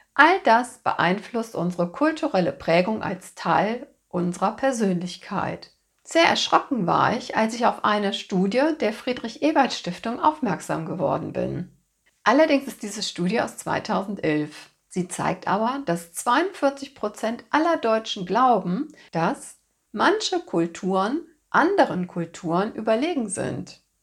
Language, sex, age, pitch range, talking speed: German, female, 60-79, 180-270 Hz, 115 wpm